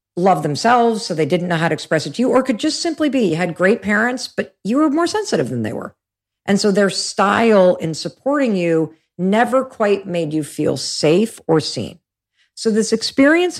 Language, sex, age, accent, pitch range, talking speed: English, female, 50-69, American, 150-210 Hz, 205 wpm